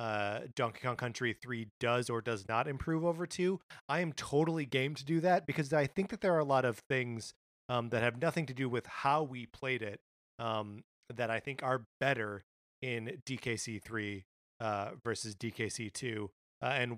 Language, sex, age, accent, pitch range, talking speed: English, male, 30-49, American, 120-150 Hz, 195 wpm